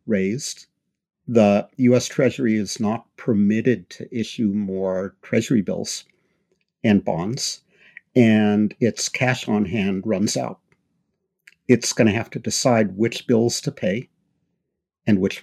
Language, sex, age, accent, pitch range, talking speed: English, male, 50-69, American, 110-160 Hz, 130 wpm